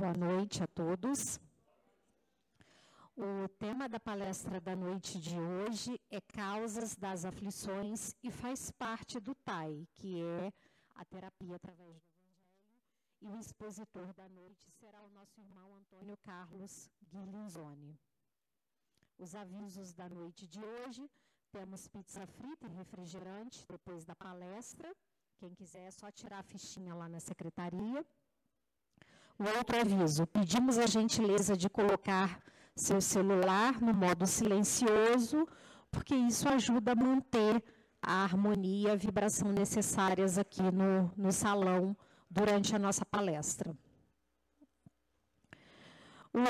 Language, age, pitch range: Portuguese, 40-59, 185-225 Hz